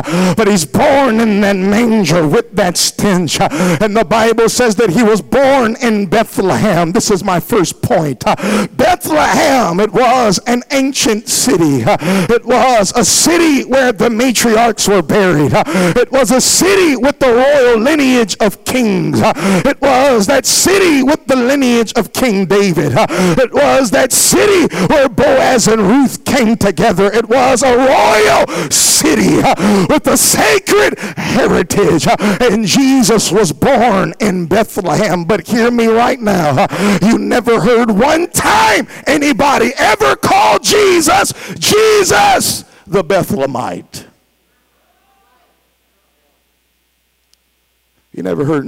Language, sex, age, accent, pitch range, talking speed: English, male, 50-69, American, 175-255 Hz, 130 wpm